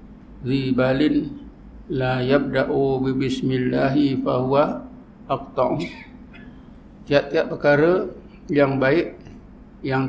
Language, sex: Malay, male